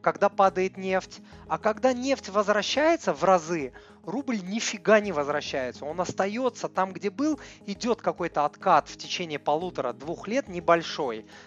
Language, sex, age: Russian, male, 30-49